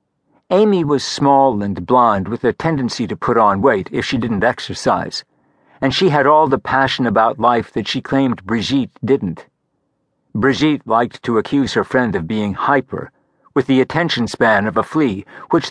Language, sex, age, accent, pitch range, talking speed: English, male, 60-79, American, 110-145 Hz, 175 wpm